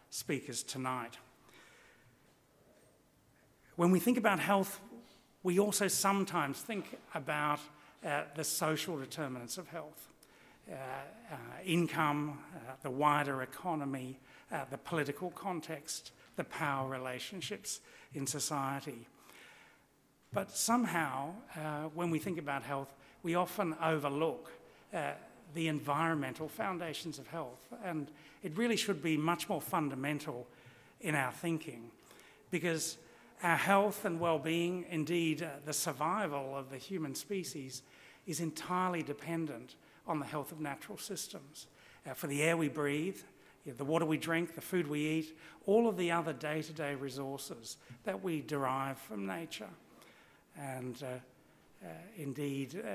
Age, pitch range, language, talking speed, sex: 60-79, 140-175 Hz, English, 130 wpm, male